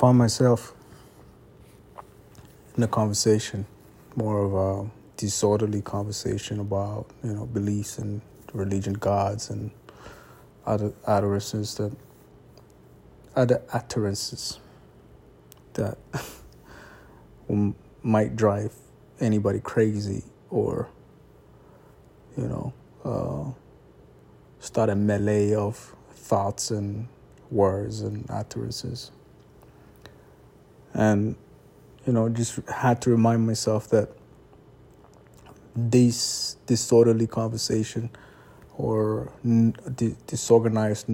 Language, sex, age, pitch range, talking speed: English, male, 20-39, 100-115 Hz, 80 wpm